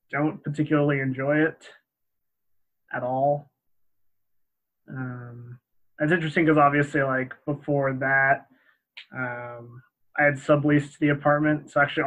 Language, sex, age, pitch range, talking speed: English, male, 20-39, 135-155 Hz, 110 wpm